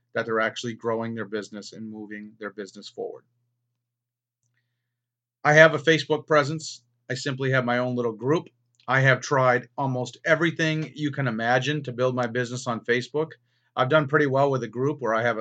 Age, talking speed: 40-59, 185 wpm